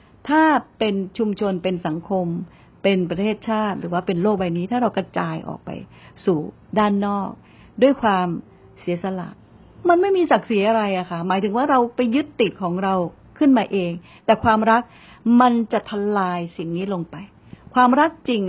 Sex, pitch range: female, 175-220 Hz